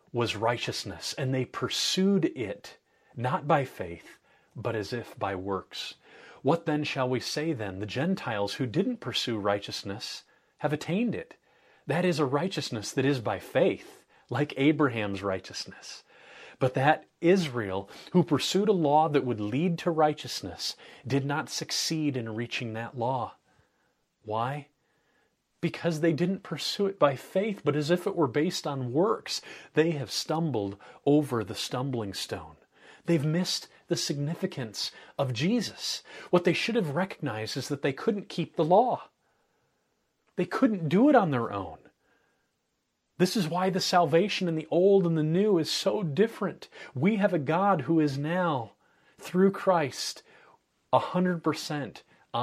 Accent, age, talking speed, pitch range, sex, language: American, 30-49, 150 wpm, 130-180 Hz, male, English